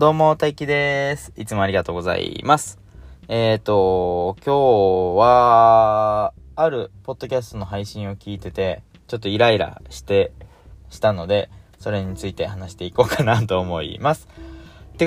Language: Japanese